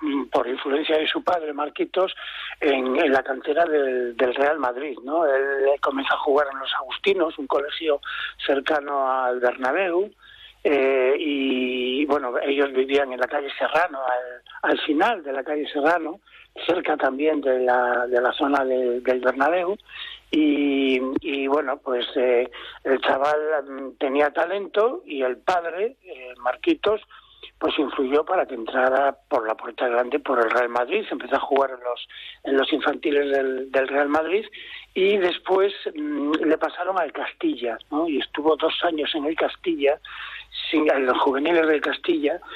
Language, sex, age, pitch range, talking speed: Spanish, male, 60-79, 130-160 Hz, 160 wpm